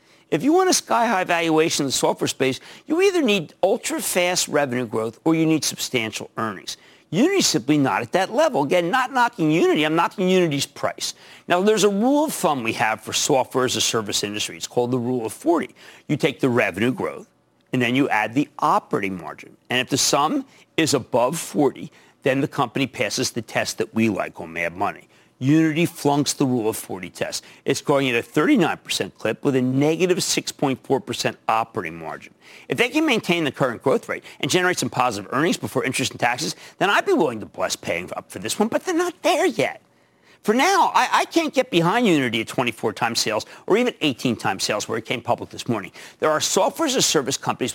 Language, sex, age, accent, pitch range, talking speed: English, male, 50-69, American, 125-185 Hz, 205 wpm